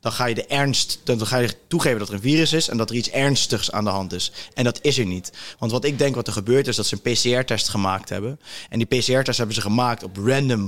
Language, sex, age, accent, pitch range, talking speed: Dutch, male, 20-39, Dutch, 110-135 Hz, 280 wpm